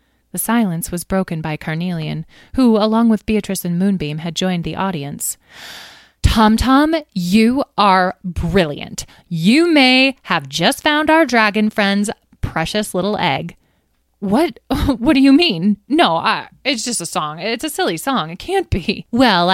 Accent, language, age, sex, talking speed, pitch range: American, English, 20-39, female, 155 wpm, 160-220 Hz